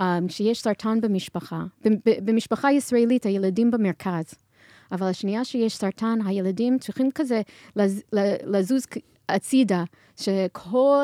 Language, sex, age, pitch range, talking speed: Hebrew, female, 30-49, 185-225 Hz, 90 wpm